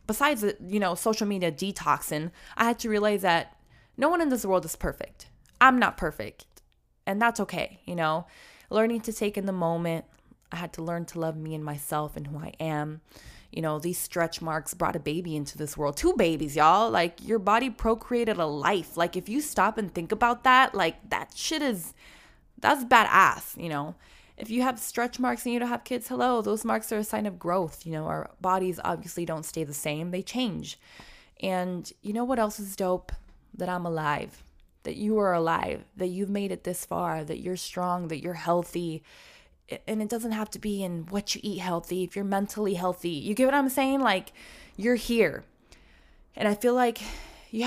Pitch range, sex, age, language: 170-225 Hz, female, 20-39, English